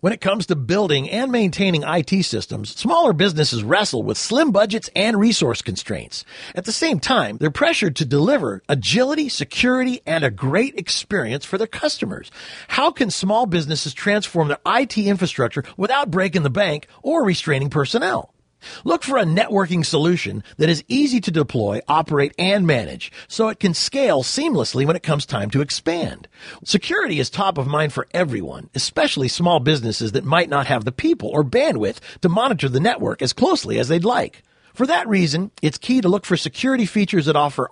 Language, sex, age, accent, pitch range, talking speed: English, male, 40-59, American, 145-210 Hz, 180 wpm